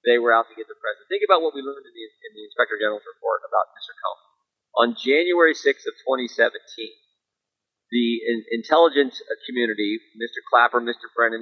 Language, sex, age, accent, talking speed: English, male, 40-59, American, 185 wpm